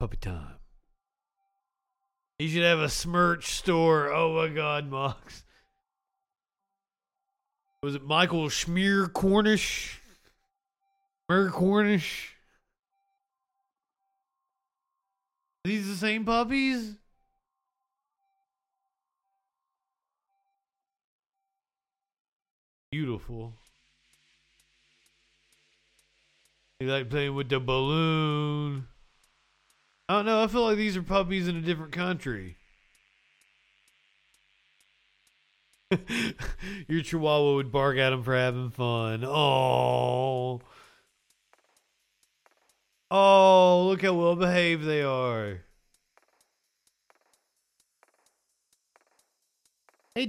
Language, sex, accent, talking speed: English, male, American, 75 wpm